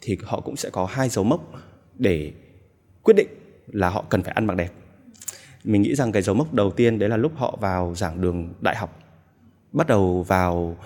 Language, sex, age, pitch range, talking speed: Vietnamese, male, 20-39, 90-120 Hz, 210 wpm